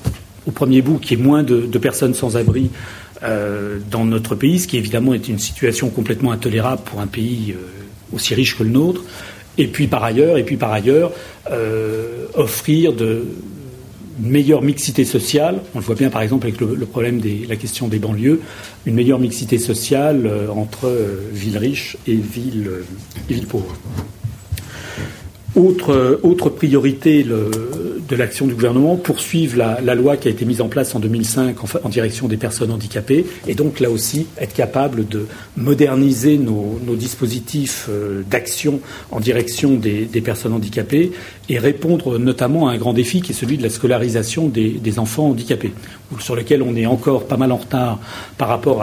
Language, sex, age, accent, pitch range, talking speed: French, male, 40-59, French, 110-135 Hz, 185 wpm